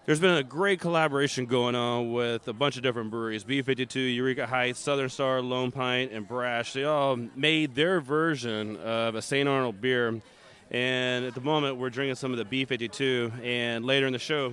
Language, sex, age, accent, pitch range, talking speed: English, male, 30-49, American, 125-150 Hz, 195 wpm